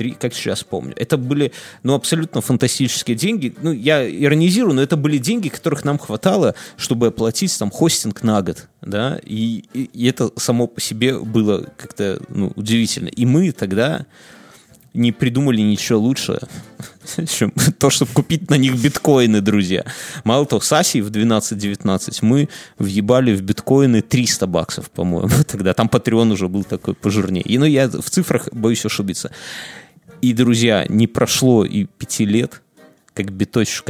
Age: 30-49